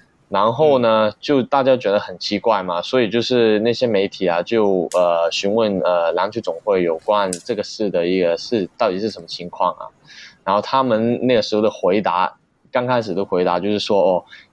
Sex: male